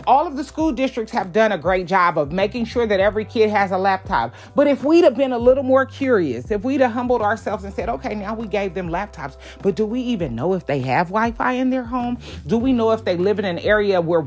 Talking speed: 270 wpm